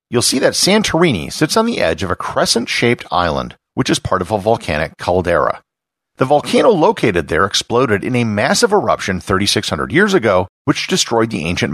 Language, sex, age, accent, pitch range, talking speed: English, male, 50-69, American, 90-150 Hz, 180 wpm